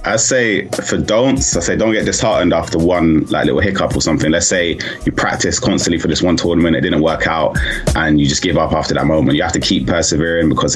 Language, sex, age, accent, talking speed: English, male, 20-39, British, 240 wpm